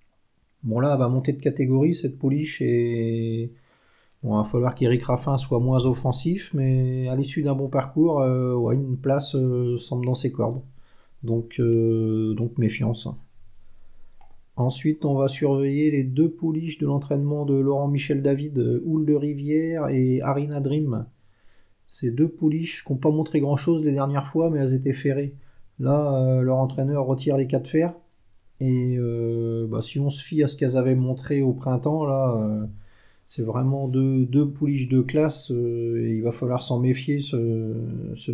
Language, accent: French, French